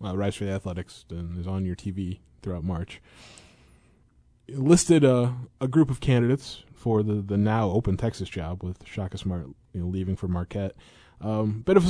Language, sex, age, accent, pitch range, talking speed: English, male, 20-39, American, 90-115 Hz, 190 wpm